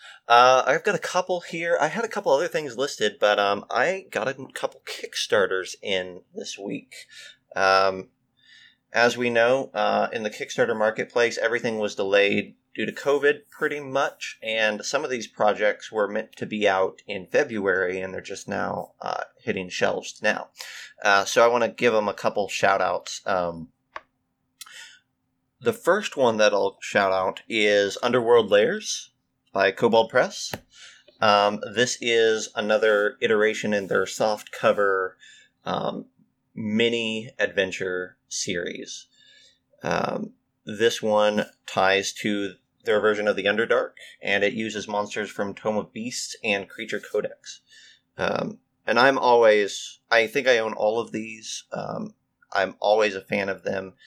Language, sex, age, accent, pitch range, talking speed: English, male, 30-49, American, 100-145 Hz, 150 wpm